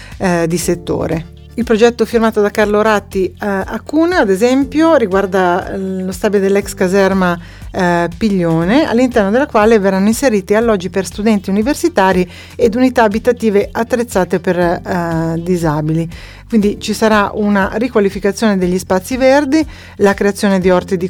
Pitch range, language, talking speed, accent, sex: 185-235 Hz, Italian, 140 wpm, native, female